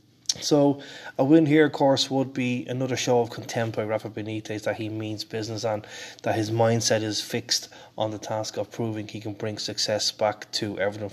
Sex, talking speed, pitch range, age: male, 200 wpm, 105-115 Hz, 20-39